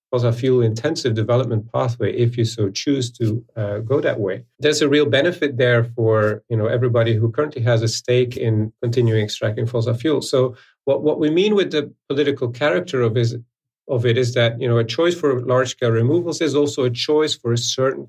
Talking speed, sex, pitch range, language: 210 wpm, male, 115-135 Hz, English